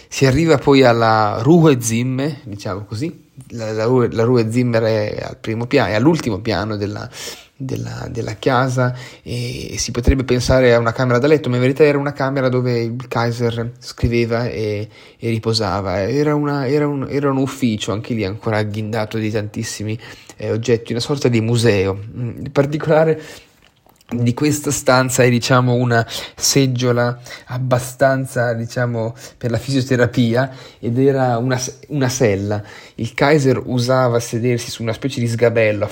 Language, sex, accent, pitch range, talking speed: Italian, male, native, 110-130 Hz, 145 wpm